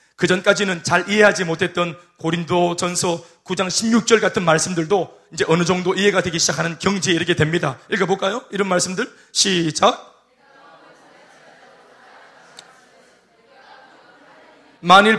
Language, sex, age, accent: Korean, male, 30-49, native